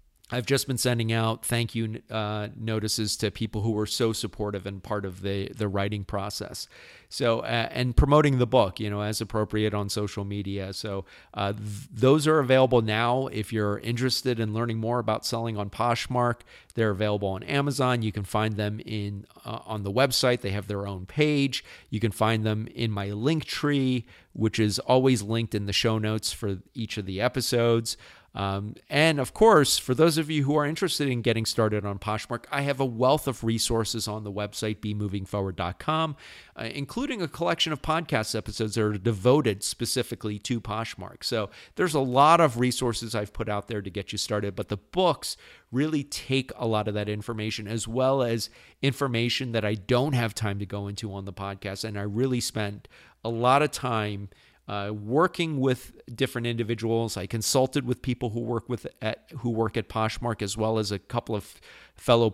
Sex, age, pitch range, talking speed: male, 40-59, 105-125 Hz, 195 wpm